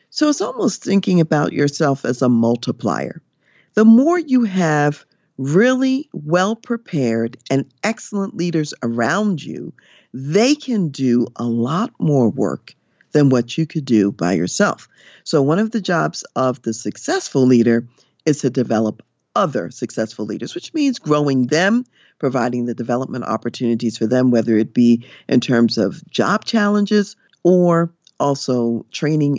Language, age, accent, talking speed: English, 50-69, American, 145 wpm